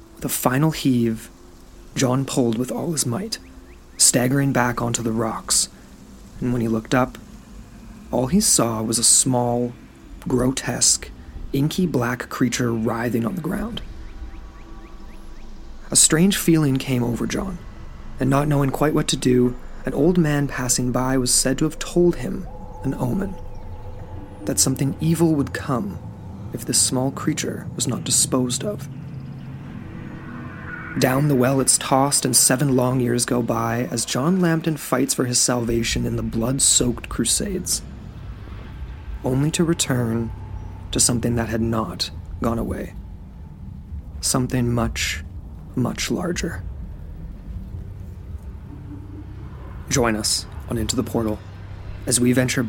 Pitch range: 95-130 Hz